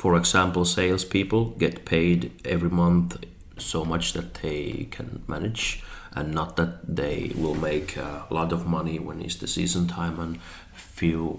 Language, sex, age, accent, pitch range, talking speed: English, male, 30-49, Finnish, 80-90 Hz, 160 wpm